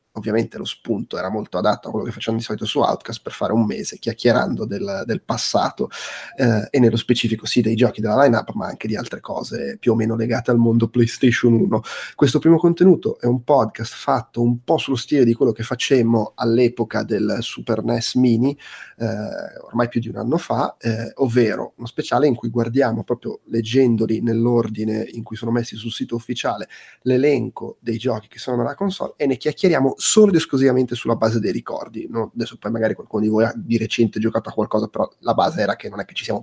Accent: native